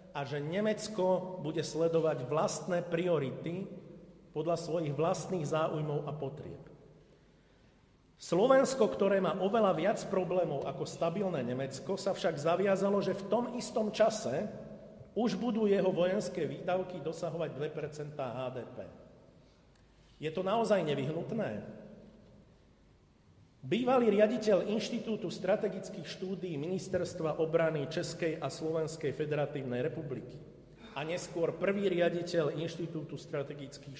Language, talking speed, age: Slovak, 105 wpm, 50-69